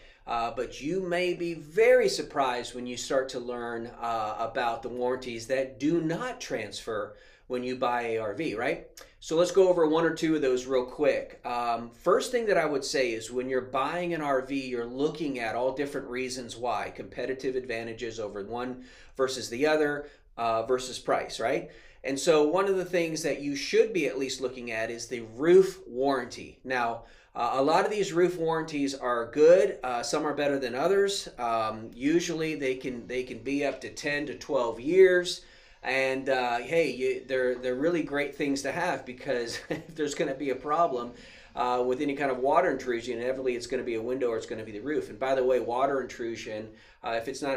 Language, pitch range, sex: English, 125-170 Hz, male